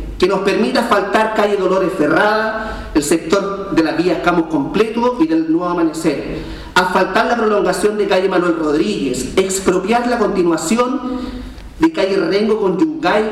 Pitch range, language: 185-225 Hz, Spanish